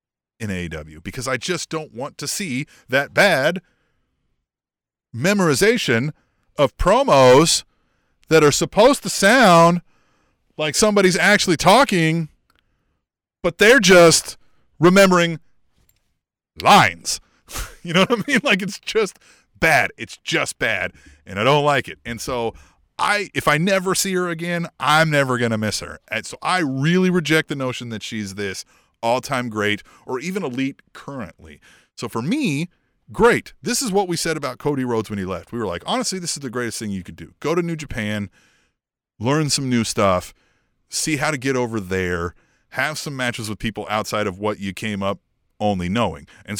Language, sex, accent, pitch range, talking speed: English, male, American, 110-180 Hz, 165 wpm